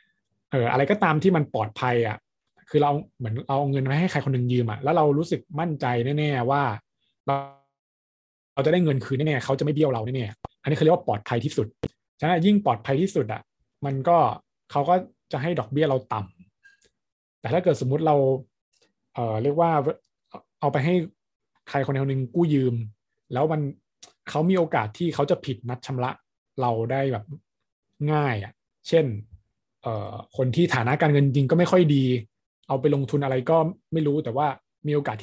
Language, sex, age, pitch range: Thai, male, 20-39, 115-150 Hz